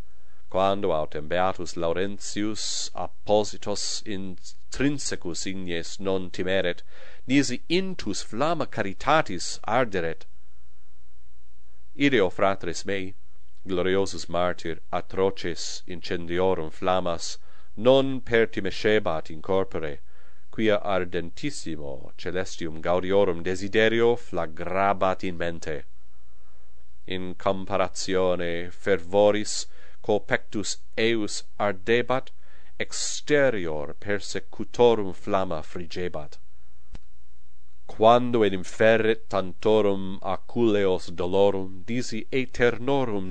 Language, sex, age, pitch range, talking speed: English, male, 40-59, 80-100 Hz, 75 wpm